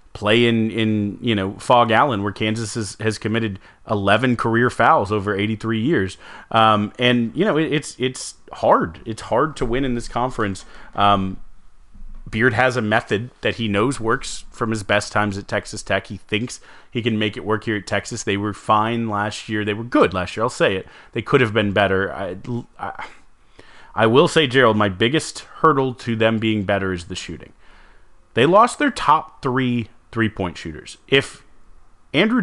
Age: 30-49